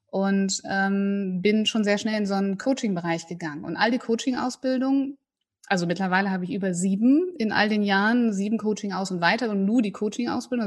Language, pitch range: German, 195-250 Hz